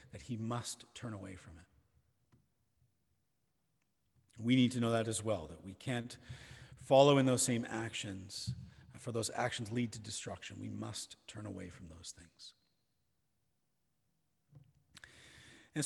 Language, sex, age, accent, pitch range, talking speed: English, male, 40-59, American, 115-145 Hz, 135 wpm